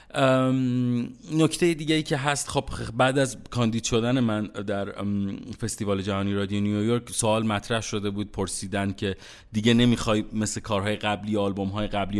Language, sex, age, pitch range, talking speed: Persian, male, 30-49, 100-120 Hz, 145 wpm